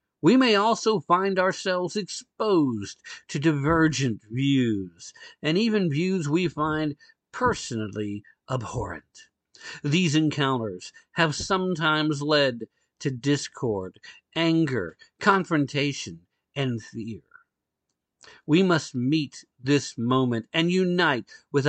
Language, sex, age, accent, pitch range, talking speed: English, male, 50-69, American, 125-175 Hz, 95 wpm